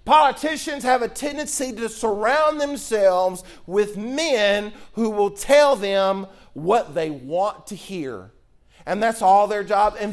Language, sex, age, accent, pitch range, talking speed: English, male, 40-59, American, 210-270 Hz, 140 wpm